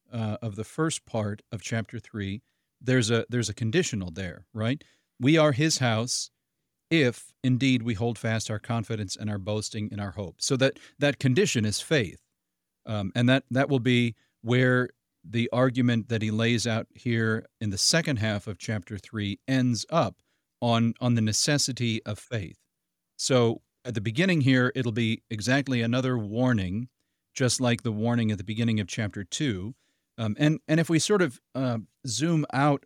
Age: 40-59